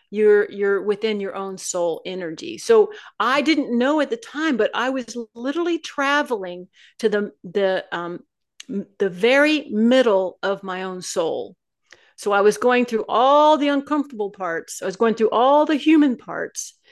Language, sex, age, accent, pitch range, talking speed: English, female, 40-59, American, 195-280 Hz, 165 wpm